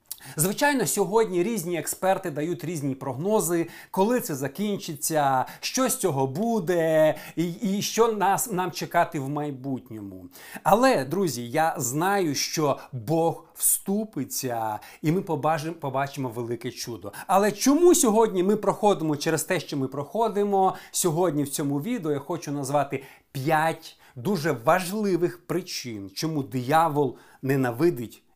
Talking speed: 125 wpm